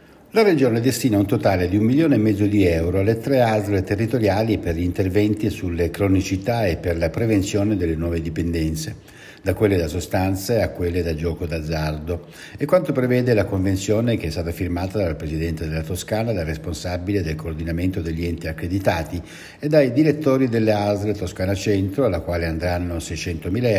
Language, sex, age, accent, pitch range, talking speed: Italian, male, 60-79, native, 85-110 Hz, 170 wpm